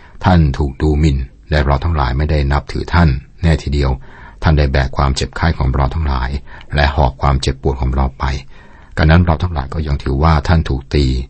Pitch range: 70-85 Hz